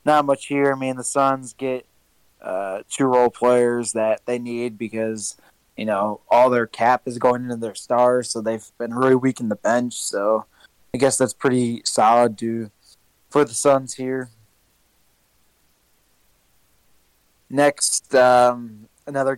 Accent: American